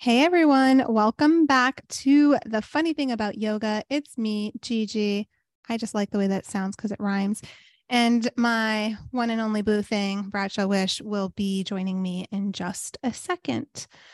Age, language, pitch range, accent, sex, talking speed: 20-39, English, 200-255 Hz, American, female, 170 wpm